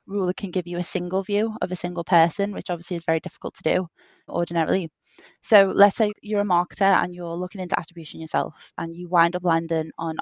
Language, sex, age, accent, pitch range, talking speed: English, female, 20-39, British, 165-190 Hz, 215 wpm